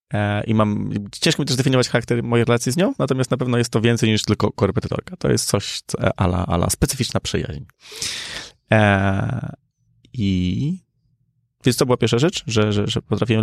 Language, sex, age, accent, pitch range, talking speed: Polish, male, 20-39, native, 110-135 Hz, 180 wpm